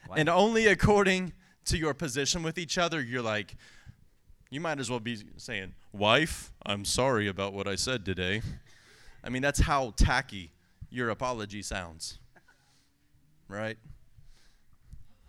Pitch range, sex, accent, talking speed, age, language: 115-195 Hz, male, American, 135 wpm, 20-39, English